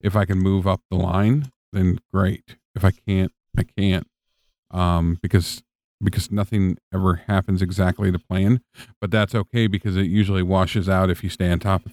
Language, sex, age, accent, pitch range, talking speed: English, male, 50-69, American, 95-110 Hz, 185 wpm